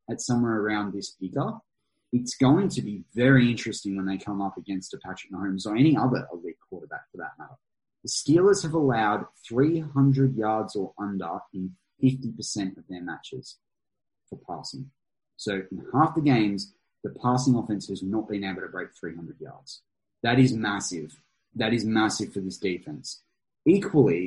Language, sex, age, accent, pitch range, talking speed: English, male, 20-39, Australian, 95-125 Hz, 170 wpm